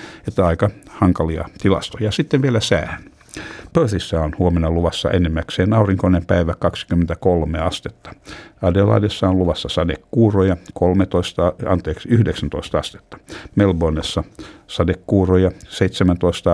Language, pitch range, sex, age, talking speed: Finnish, 85-100 Hz, male, 60-79, 100 wpm